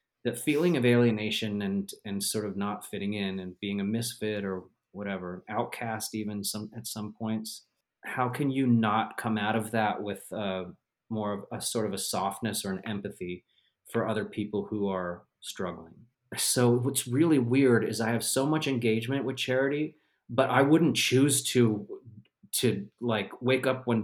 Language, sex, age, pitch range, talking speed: English, male, 30-49, 105-125 Hz, 175 wpm